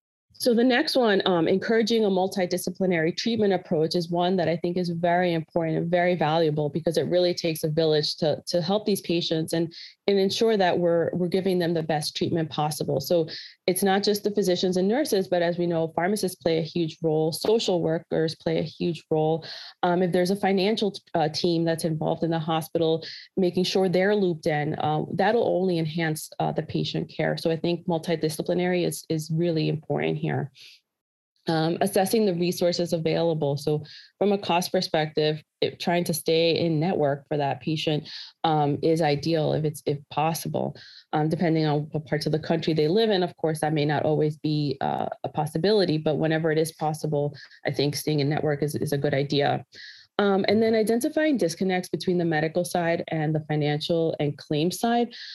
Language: English